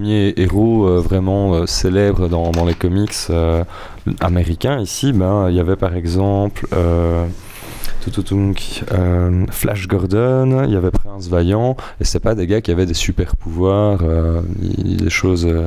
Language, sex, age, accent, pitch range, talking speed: French, male, 20-39, French, 90-105 Hz, 155 wpm